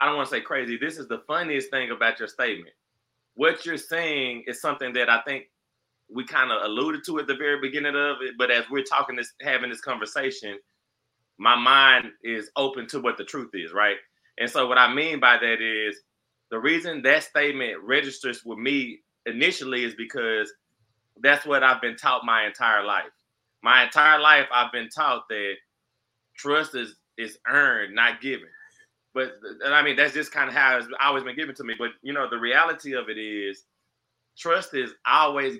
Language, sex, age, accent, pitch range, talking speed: English, male, 20-39, American, 120-150 Hz, 195 wpm